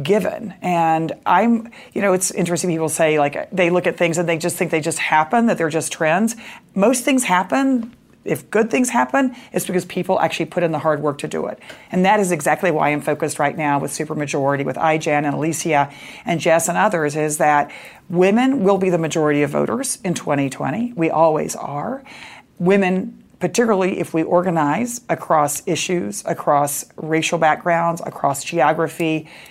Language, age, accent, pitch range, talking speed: English, 40-59, American, 155-195 Hz, 180 wpm